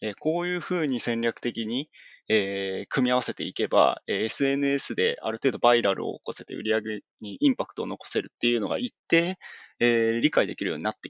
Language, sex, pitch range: Japanese, male, 110-165 Hz